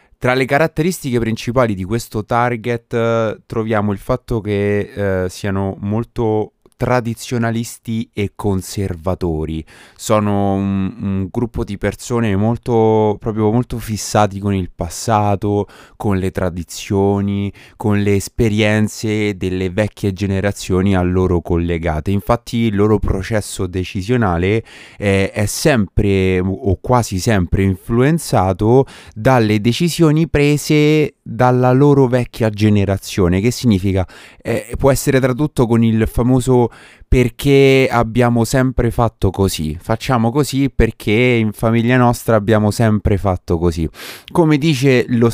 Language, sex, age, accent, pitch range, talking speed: Italian, male, 20-39, native, 100-125 Hz, 115 wpm